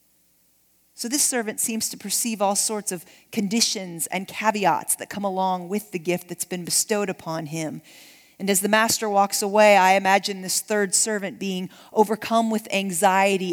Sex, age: female, 40-59